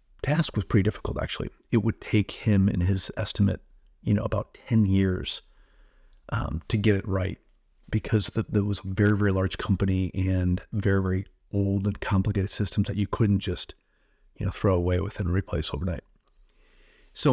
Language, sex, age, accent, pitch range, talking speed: English, male, 40-59, American, 95-110 Hz, 180 wpm